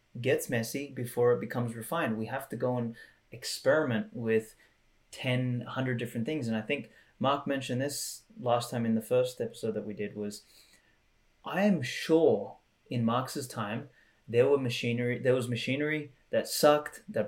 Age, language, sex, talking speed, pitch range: 20-39, English, male, 170 wpm, 115-145 Hz